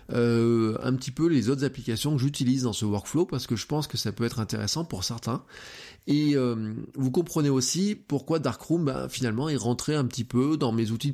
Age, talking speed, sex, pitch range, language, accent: 20-39, 215 wpm, male, 110-140 Hz, French, French